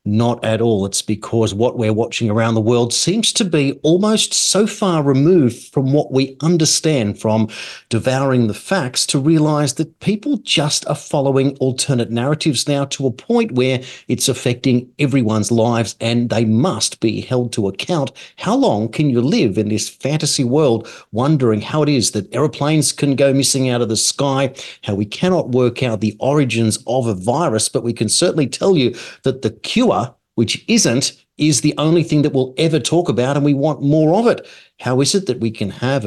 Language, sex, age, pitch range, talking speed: English, male, 40-59, 115-150 Hz, 195 wpm